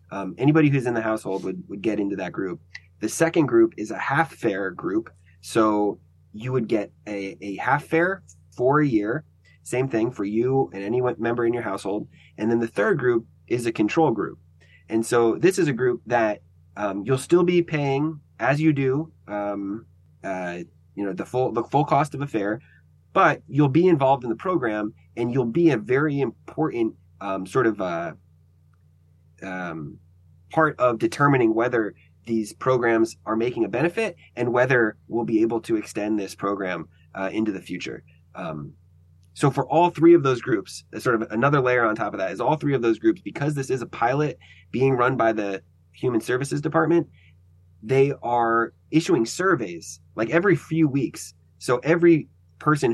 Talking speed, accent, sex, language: 185 wpm, American, male, English